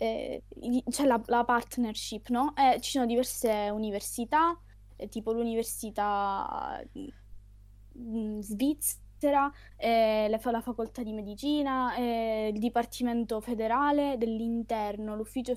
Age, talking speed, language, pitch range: 20-39, 110 wpm, Italian, 215-270 Hz